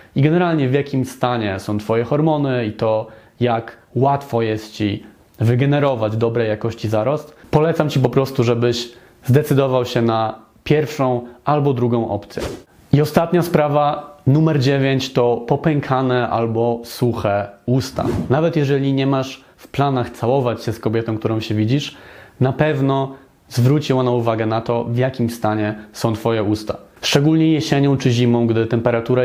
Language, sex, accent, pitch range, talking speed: Polish, male, native, 115-135 Hz, 150 wpm